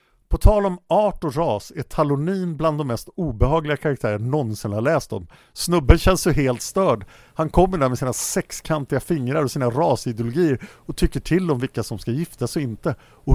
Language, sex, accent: Swedish, male, Norwegian